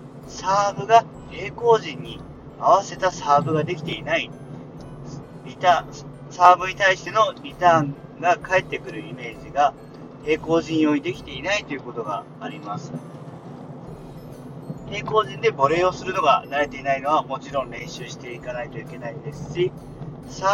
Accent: native